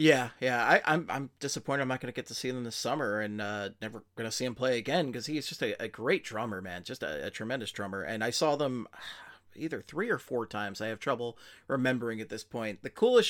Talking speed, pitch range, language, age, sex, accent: 245 wpm, 110-150 Hz, English, 30-49, male, American